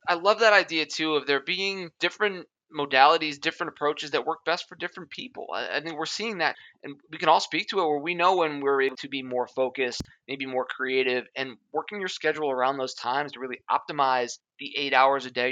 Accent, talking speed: American, 230 wpm